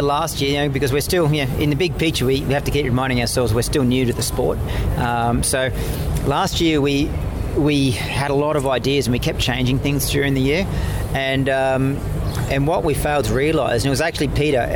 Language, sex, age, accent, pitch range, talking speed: English, male, 40-59, Australian, 120-140 Hz, 235 wpm